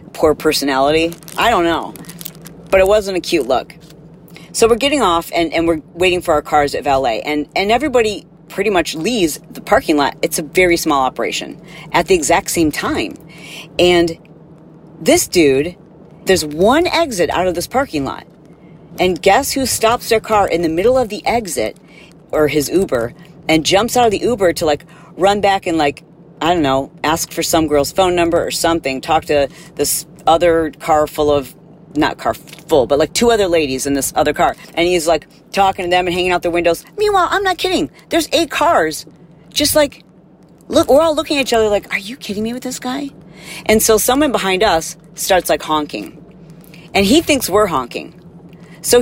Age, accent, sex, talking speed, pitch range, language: 40-59, American, female, 195 wpm, 160-215 Hz, English